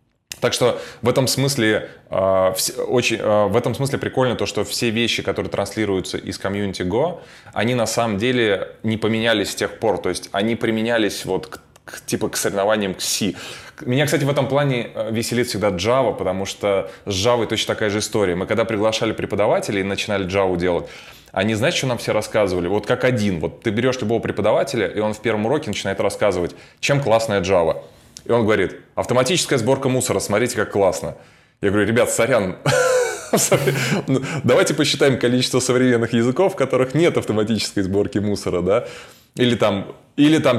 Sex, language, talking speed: male, Russian, 165 wpm